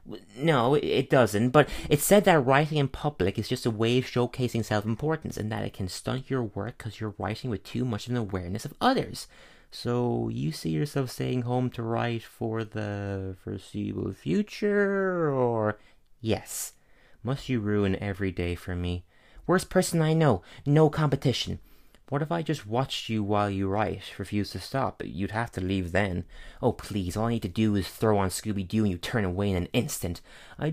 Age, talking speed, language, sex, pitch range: 30-49, 190 wpm, English, male, 100-135 Hz